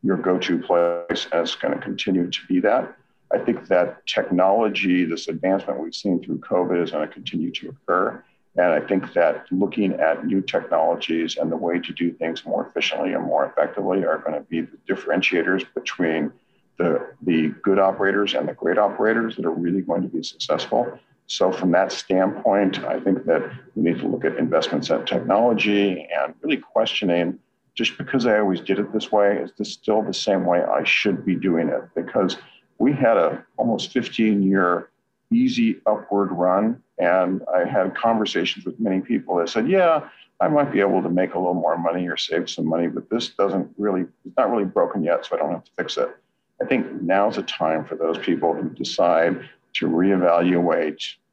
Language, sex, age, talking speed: English, male, 50-69, 195 wpm